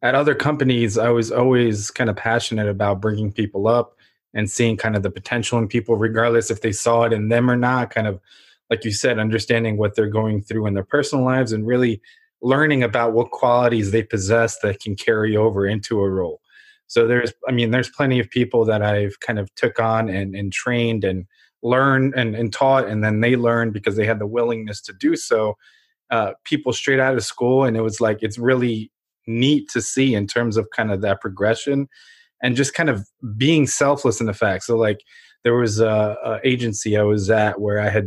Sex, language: male, English